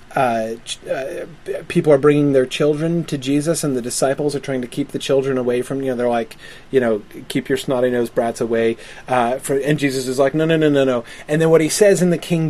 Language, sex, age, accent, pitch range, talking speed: English, male, 30-49, American, 130-155 Hz, 225 wpm